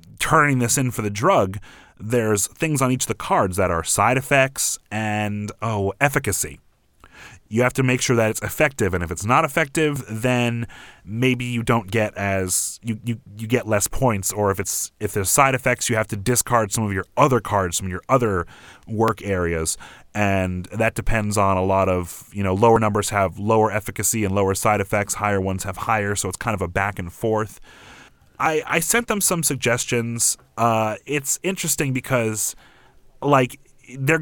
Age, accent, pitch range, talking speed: 30-49, American, 100-125 Hz, 190 wpm